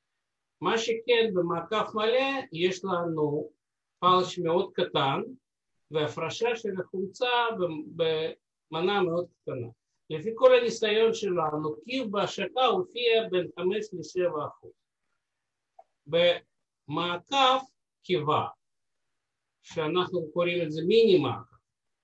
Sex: male